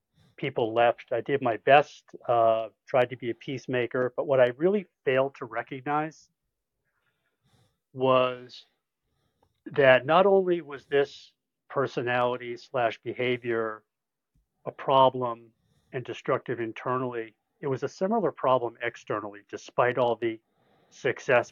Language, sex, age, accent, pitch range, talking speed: English, male, 40-59, American, 115-140 Hz, 120 wpm